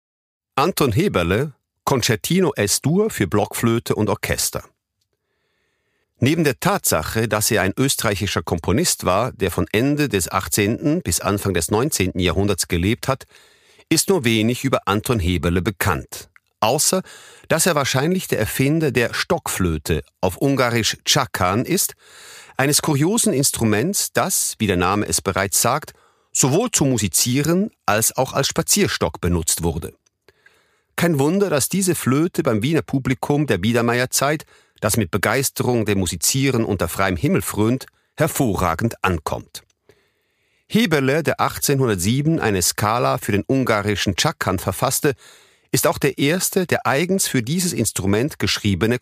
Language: German